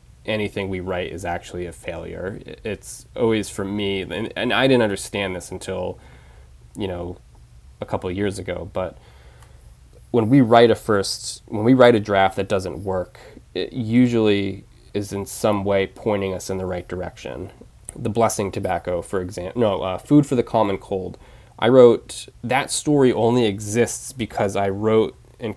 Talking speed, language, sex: 170 wpm, English, male